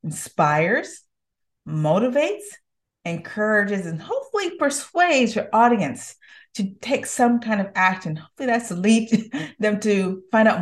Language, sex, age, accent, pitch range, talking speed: English, female, 30-49, American, 200-265 Hz, 125 wpm